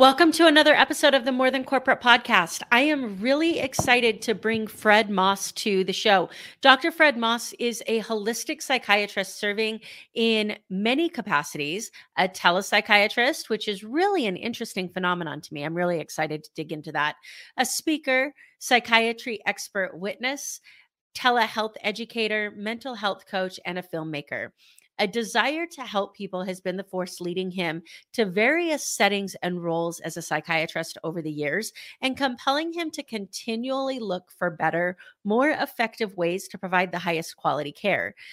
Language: English